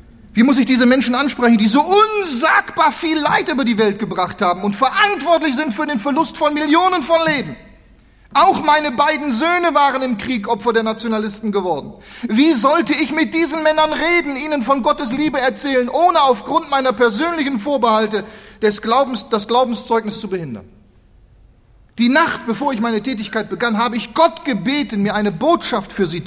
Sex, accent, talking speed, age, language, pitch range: male, German, 170 wpm, 40-59, German, 155-255 Hz